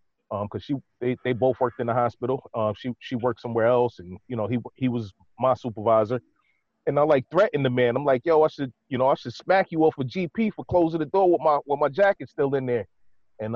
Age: 30-49